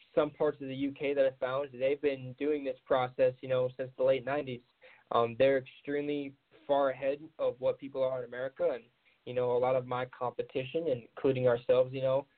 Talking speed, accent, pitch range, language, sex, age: 205 wpm, American, 125-145 Hz, English, male, 10-29